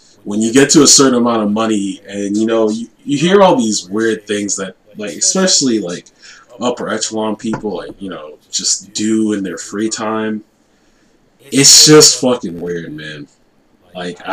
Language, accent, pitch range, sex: English, American, 105-150 Hz, male